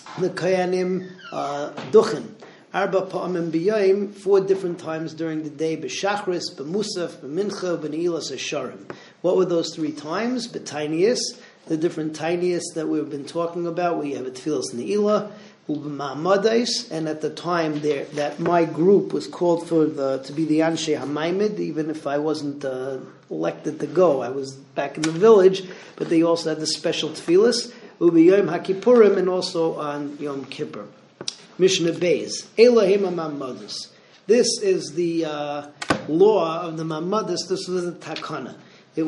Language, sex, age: English, male, 40-59